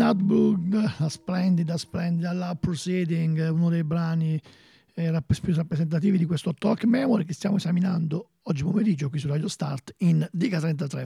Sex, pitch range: male, 165-200 Hz